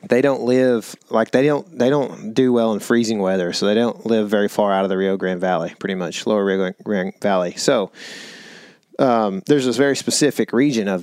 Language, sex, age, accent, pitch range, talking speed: English, male, 20-39, American, 105-125 Hz, 210 wpm